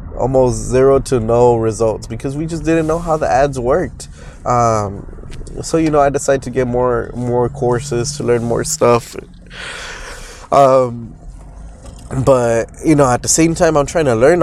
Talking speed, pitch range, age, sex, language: 170 wpm, 115-135 Hz, 20-39, male, English